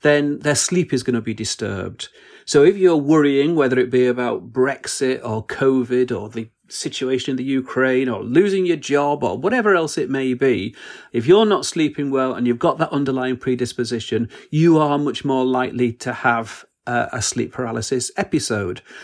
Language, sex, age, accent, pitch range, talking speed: English, male, 40-59, British, 125-150 Hz, 185 wpm